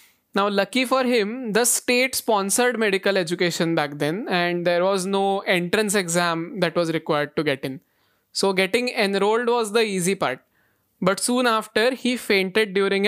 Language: English